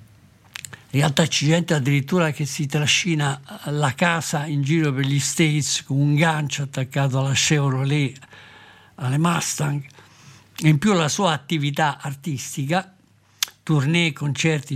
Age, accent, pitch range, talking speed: 60-79, native, 135-160 Hz, 125 wpm